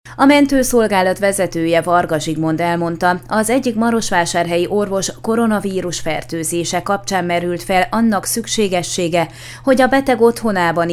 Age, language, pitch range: 30-49, Hungarian, 170-220 Hz